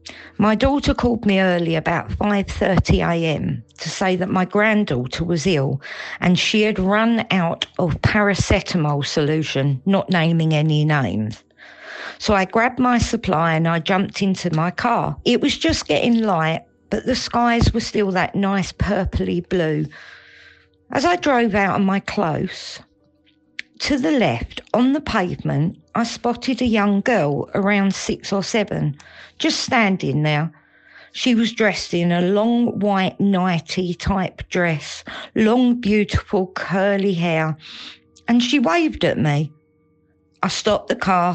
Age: 50-69